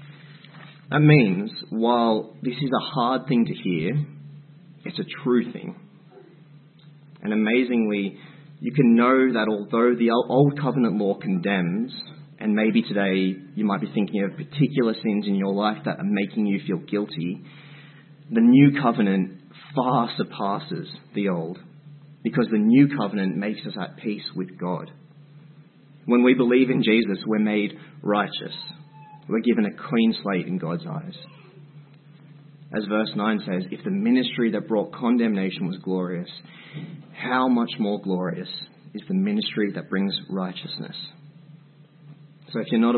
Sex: male